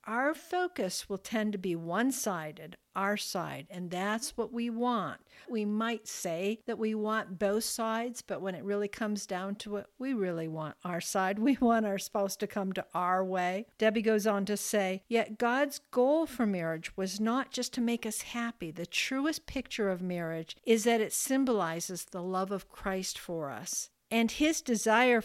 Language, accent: English, American